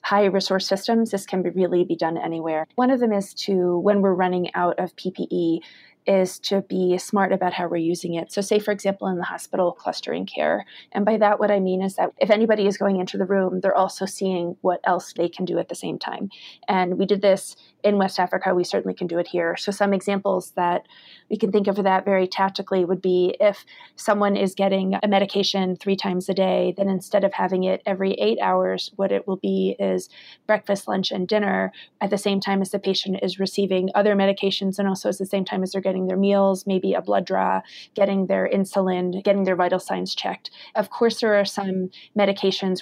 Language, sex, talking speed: English, female, 225 wpm